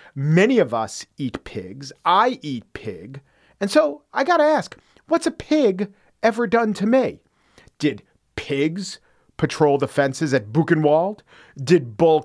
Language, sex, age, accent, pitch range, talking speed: English, male, 40-59, American, 130-175 Hz, 140 wpm